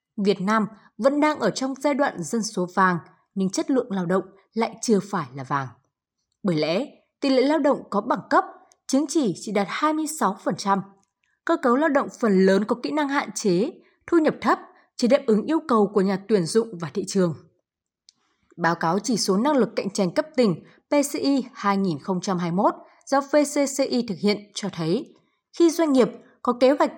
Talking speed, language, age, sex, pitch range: 190 wpm, Vietnamese, 20-39, female, 190-275 Hz